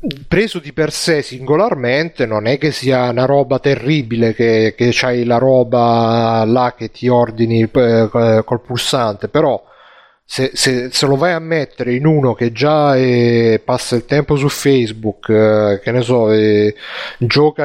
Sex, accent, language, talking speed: male, native, Italian, 155 wpm